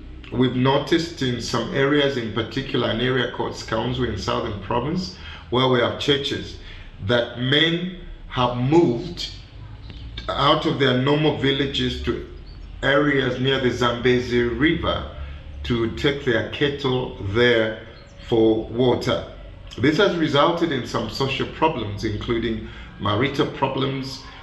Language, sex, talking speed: English, male, 125 wpm